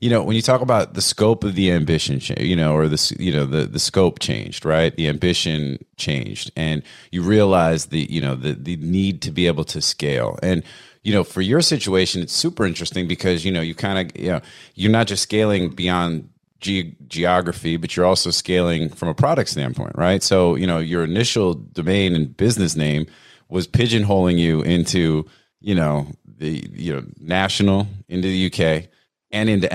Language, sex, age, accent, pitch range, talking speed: English, male, 30-49, American, 80-95 Hz, 195 wpm